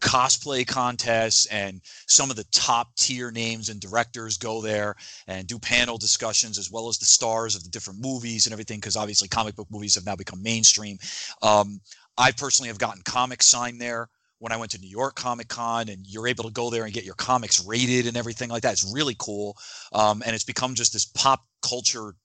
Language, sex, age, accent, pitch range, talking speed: English, male, 30-49, American, 105-125 Hz, 215 wpm